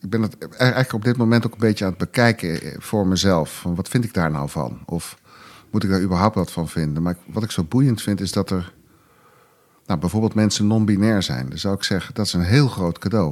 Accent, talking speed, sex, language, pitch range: Dutch, 245 wpm, male, Dutch, 90-115 Hz